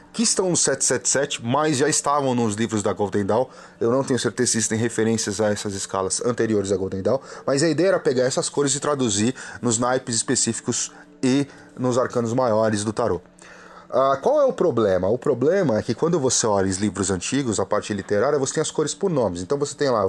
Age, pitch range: 30-49, 110-150 Hz